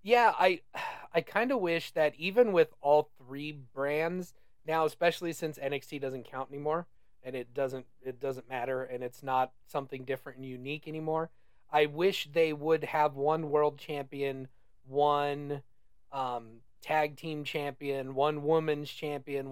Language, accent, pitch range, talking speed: English, American, 135-165 Hz, 150 wpm